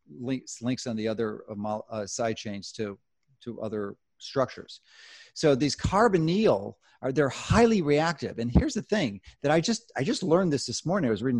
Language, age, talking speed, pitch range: English, 40-59, 190 wpm, 120-170 Hz